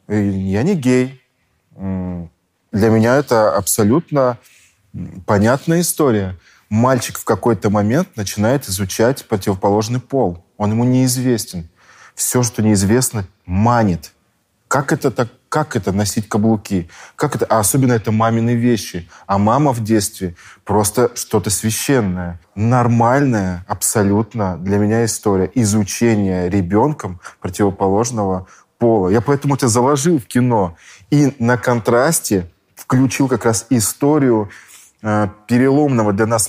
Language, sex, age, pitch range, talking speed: Russian, male, 20-39, 100-125 Hz, 105 wpm